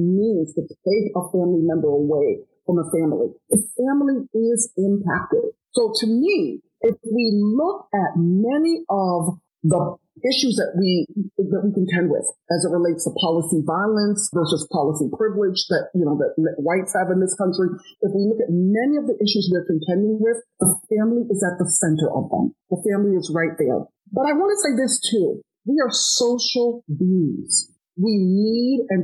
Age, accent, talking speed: 50-69, American, 180 wpm